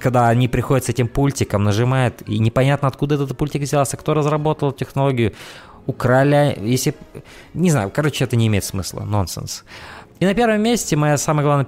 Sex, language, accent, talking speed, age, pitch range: male, Russian, native, 170 wpm, 20-39, 115-150 Hz